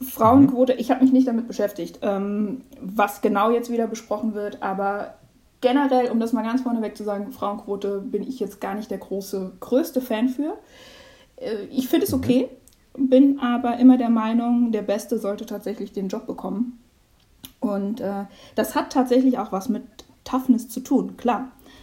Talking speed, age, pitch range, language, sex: 165 wpm, 20-39, 205-255 Hz, German, female